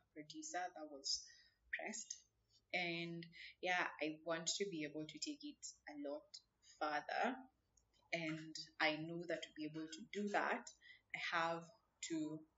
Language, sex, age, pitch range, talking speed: English, female, 20-39, 150-215 Hz, 145 wpm